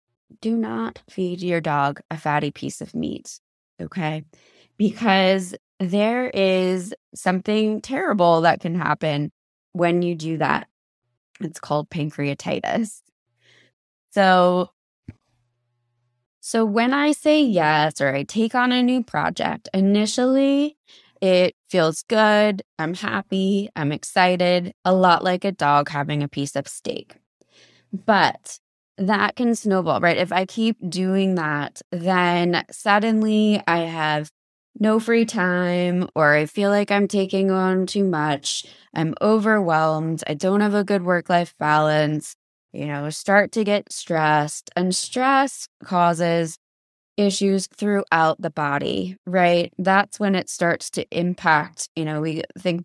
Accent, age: American, 20-39